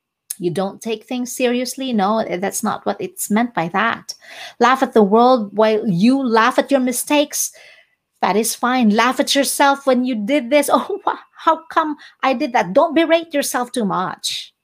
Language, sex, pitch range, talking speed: English, female, 215-290 Hz, 180 wpm